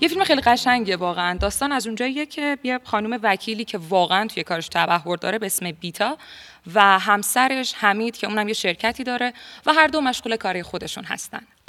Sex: female